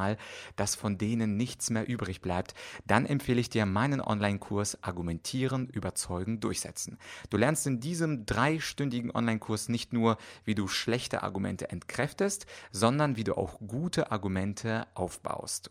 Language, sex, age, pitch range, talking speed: German, male, 30-49, 100-130 Hz, 140 wpm